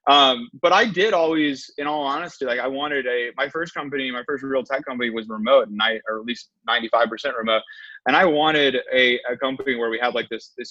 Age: 20-39